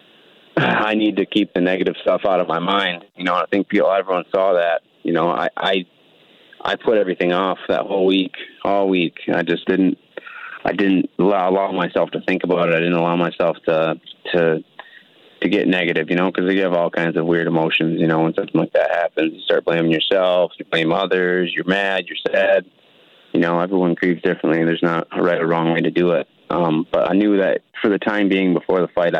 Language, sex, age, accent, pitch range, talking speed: English, male, 30-49, American, 85-95 Hz, 220 wpm